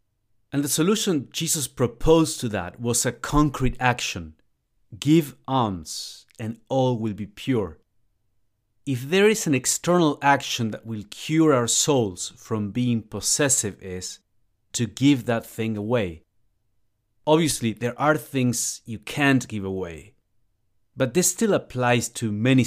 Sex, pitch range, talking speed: male, 105-130 Hz, 140 wpm